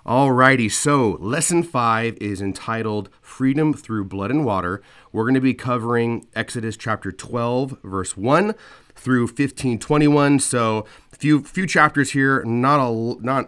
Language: English